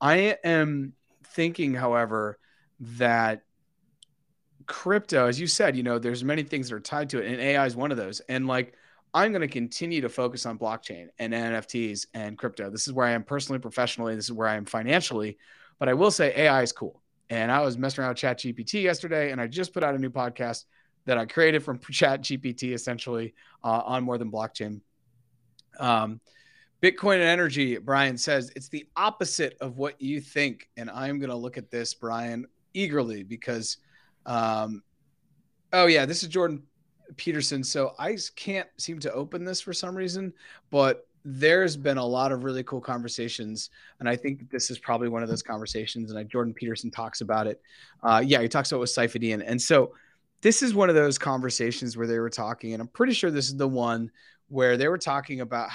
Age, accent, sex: 30-49, American, male